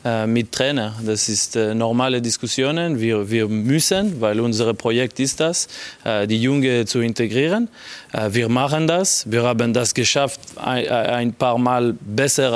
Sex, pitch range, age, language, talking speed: male, 115-140 Hz, 20-39, German, 160 wpm